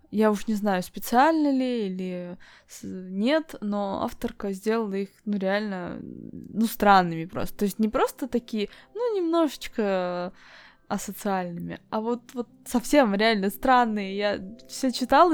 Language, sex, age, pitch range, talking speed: Russian, female, 20-39, 195-265 Hz, 135 wpm